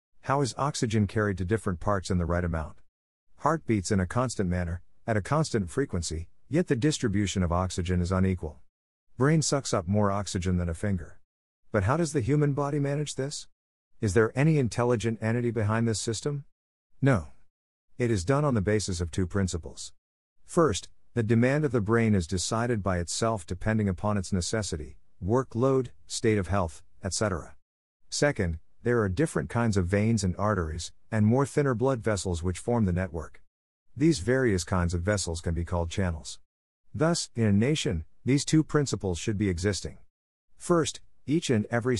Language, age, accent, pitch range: English, 50-69, American, 90-120 Hz